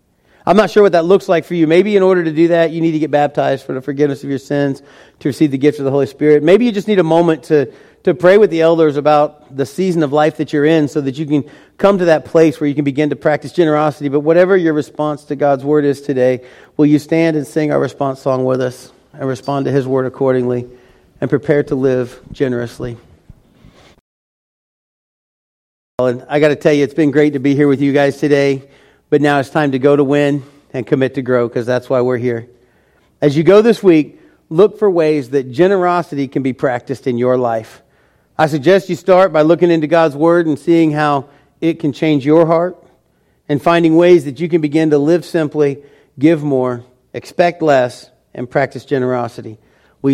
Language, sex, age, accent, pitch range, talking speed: English, male, 40-59, American, 135-165 Hz, 220 wpm